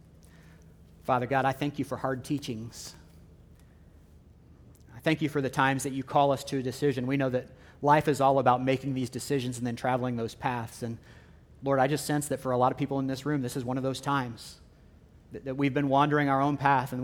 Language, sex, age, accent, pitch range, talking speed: English, male, 40-59, American, 110-140 Hz, 230 wpm